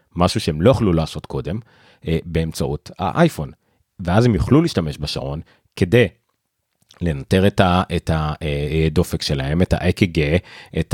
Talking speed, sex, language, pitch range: 115 wpm, male, Hebrew, 85-110 Hz